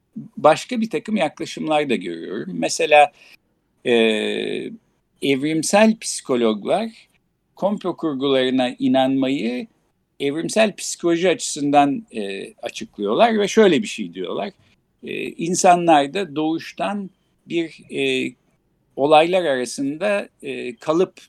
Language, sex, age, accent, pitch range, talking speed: Turkish, male, 60-79, native, 120-190 Hz, 90 wpm